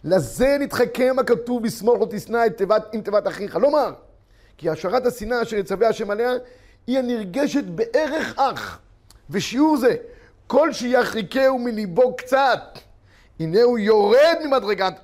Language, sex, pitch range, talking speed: Hebrew, male, 165-245 Hz, 130 wpm